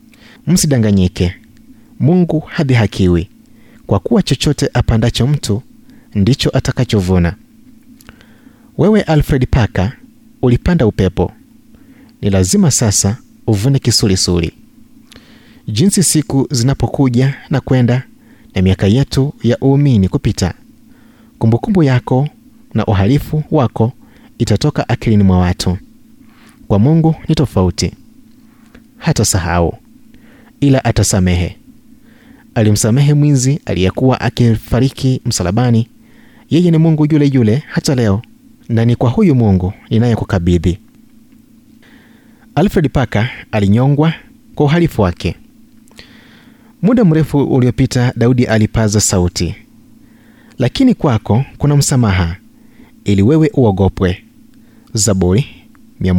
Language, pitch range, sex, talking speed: Swahili, 105-175 Hz, male, 95 wpm